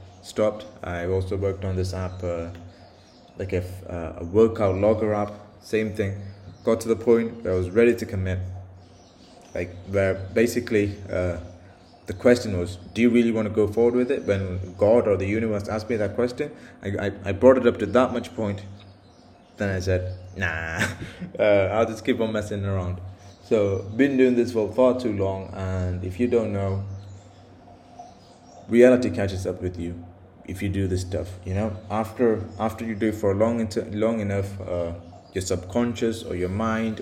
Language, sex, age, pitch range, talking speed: English, male, 20-39, 90-110 Hz, 185 wpm